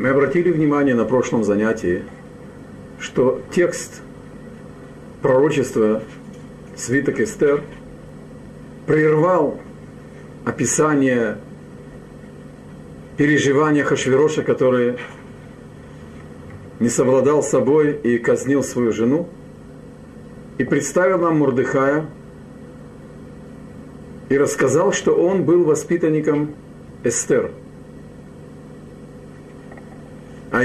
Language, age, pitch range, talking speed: Russian, 50-69, 120-150 Hz, 70 wpm